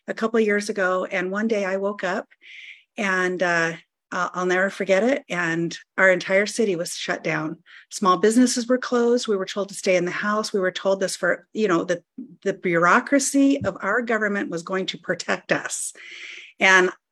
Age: 40-59